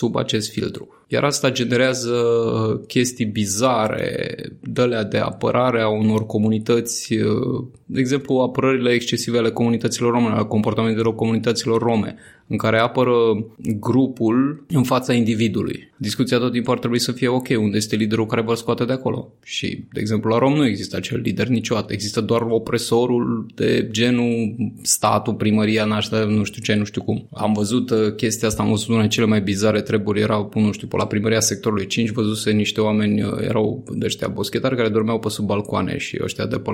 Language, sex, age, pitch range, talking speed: Romanian, male, 20-39, 110-130 Hz, 170 wpm